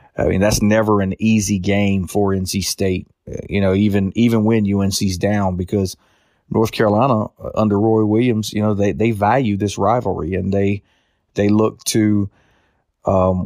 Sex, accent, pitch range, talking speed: male, American, 100-110 Hz, 160 wpm